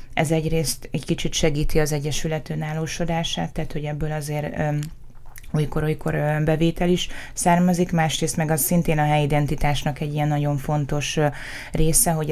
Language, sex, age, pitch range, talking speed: Hungarian, female, 20-39, 145-165 Hz, 140 wpm